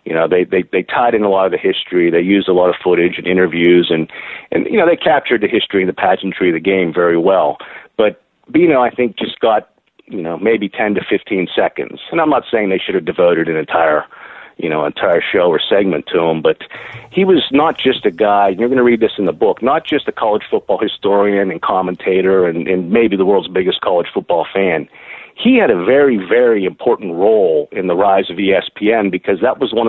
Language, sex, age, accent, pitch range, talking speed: English, male, 50-69, American, 95-120 Hz, 235 wpm